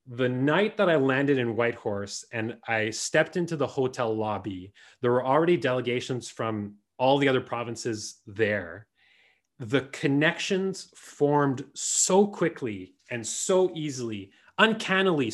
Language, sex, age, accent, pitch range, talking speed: English, male, 20-39, Canadian, 120-150 Hz, 130 wpm